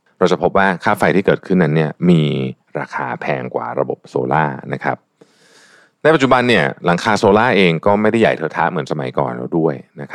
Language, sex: Thai, male